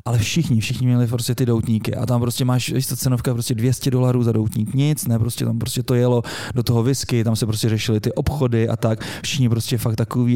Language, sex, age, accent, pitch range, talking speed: Czech, male, 20-39, native, 110-125 Hz, 230 wpm